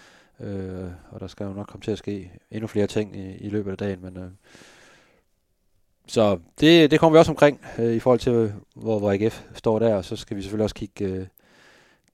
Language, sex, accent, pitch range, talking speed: Danish, male, native, 95-110 Hz, 220 wpm